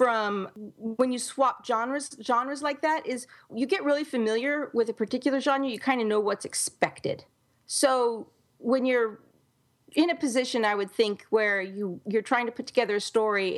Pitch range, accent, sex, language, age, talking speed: 205-260 Hz, American, female, English, 40-59, 180 wpm